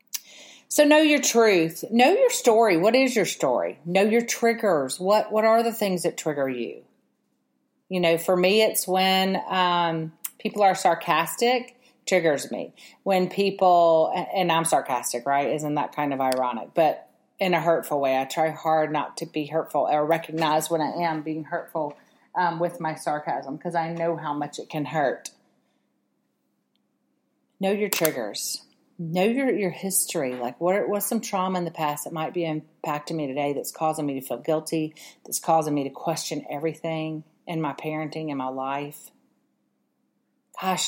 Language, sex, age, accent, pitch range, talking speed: English, female, 40-59, American, 150-190 Hz, 170 wpm